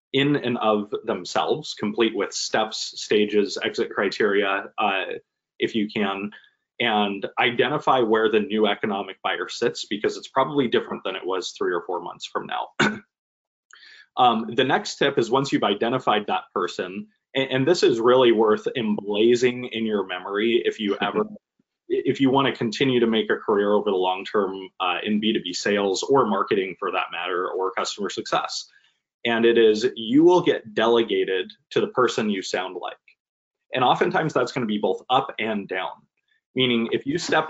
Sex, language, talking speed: male, English, 175 wpm